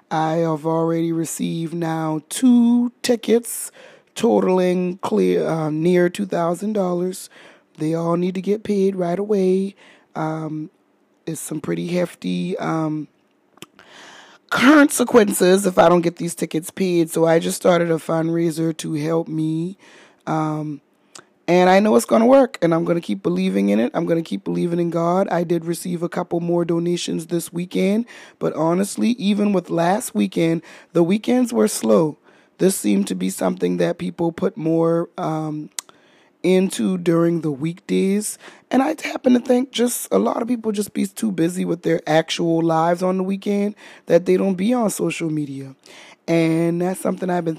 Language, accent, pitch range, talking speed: English, American, 160-195 Hz, 165 wpm